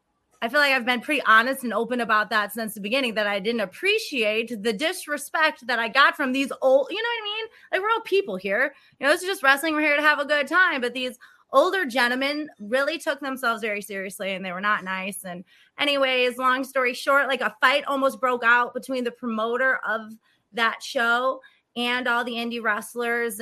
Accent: American